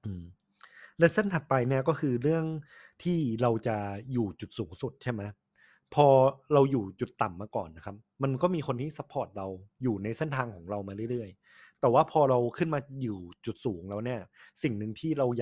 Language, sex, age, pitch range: Thai, male, 20-39, 105-140 Hz